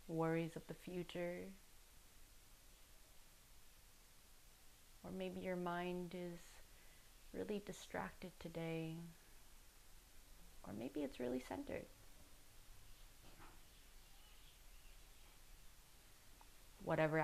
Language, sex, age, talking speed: English, female, 30-49, 65 wpm